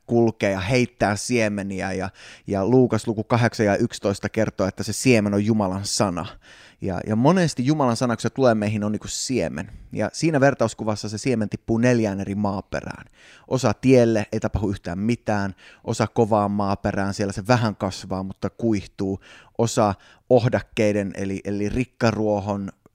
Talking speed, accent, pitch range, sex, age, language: 150 wpm, native, 105-130 Hz, male, 20-39, Finnish